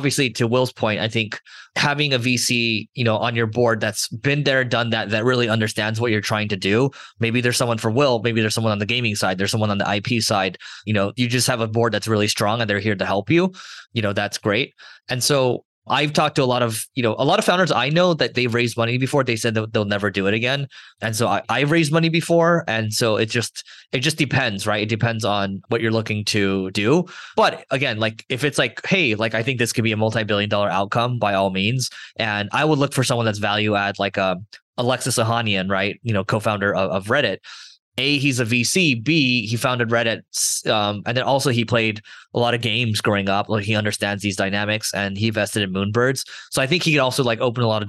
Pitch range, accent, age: 105-125 Hz, American, 20-39